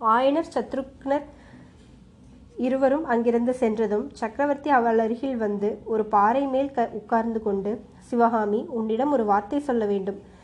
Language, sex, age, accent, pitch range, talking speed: Tamil, female, 20-39, native, 215-255 Hz, 120 wpm